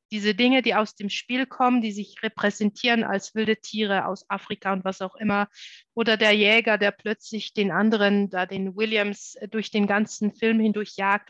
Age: 30-49